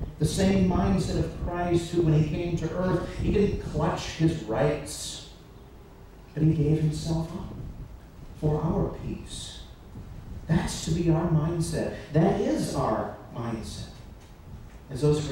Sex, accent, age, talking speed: male, American, 40-59, 140 wpm